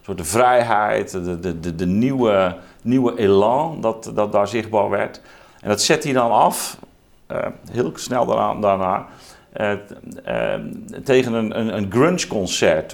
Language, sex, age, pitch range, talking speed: Dutch, male, 50-69, 90-115 Hz, 160 wpm